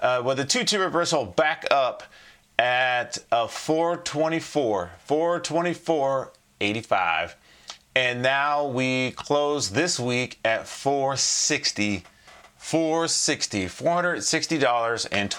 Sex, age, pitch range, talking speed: male, 30-49, 115-160 Hz, 80 wpm